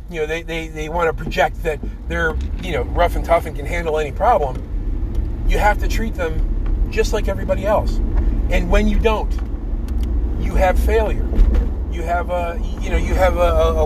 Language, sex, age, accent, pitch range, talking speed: English, male, 40-59, American, 70-75 Hz, 195 wpm